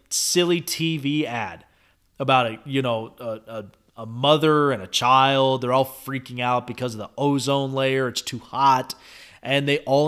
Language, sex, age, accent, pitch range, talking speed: English, male, 30-49, American, 125-160 Hz, 175 wpm